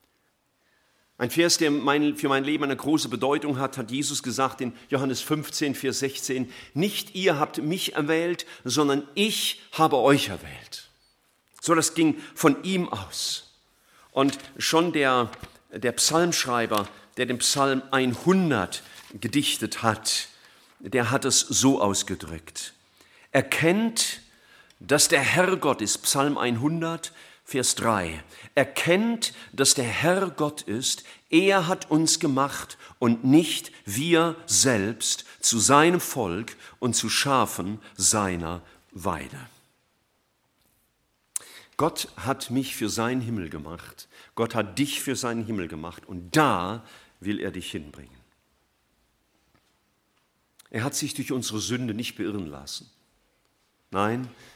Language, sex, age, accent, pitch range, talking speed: German, male, 50-69, German, 110-155 Hz, 125 wpm